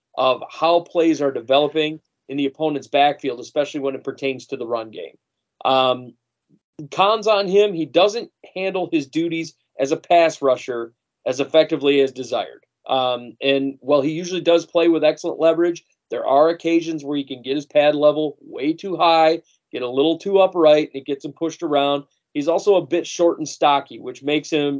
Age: 30-49